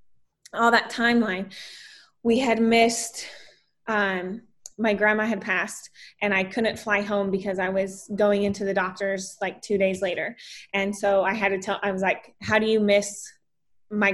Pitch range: 195-220 Hz